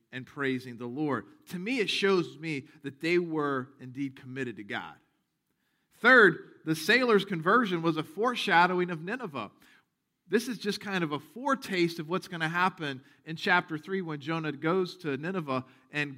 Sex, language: male, English